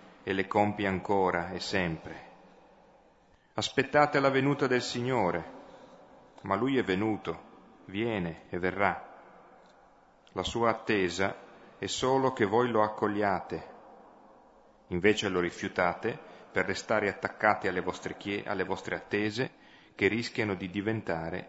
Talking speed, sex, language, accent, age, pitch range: 120 wpm, male, Italian, native, 40-59, 95-110 Hz